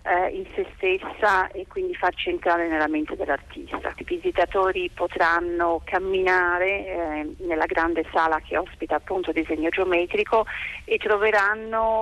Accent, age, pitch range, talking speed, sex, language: native, 30-49, 165-220 Hz, 130 wpm, female, Italian